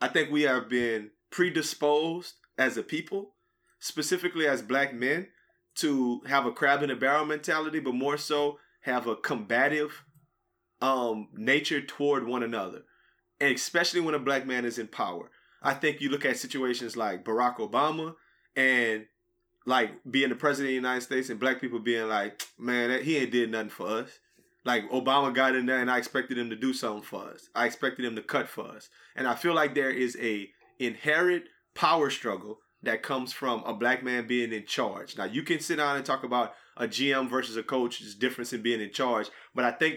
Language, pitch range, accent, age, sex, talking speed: English, 120-150 Hz, American, 20-39, male, 200 wpm